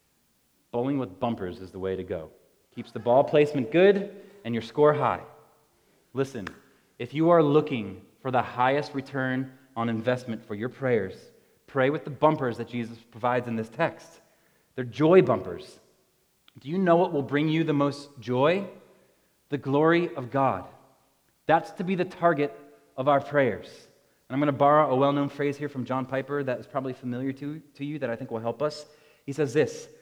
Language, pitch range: English, 130-160 Hz